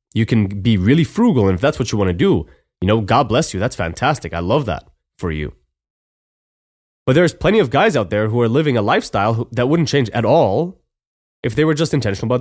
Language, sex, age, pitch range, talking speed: English, male, 20-39, 95-130 Hz, 230 wpm